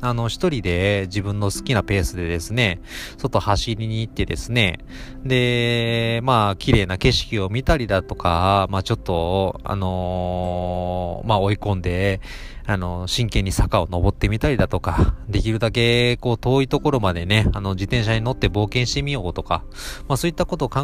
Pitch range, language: 90-130 Hz, Japanese